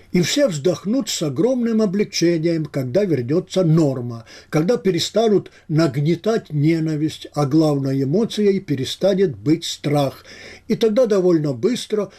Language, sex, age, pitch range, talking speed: Russian, male, 60-79, 140-185 Hz, 115 wpm